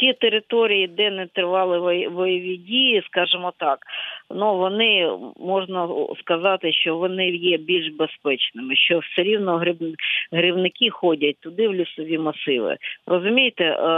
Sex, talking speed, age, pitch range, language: female, 120 wpm, 40-59, 160-195 Hz, Ukrainian